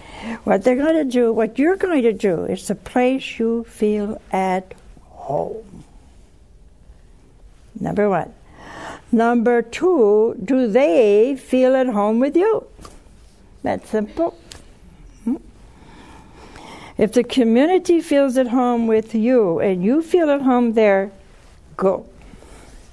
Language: English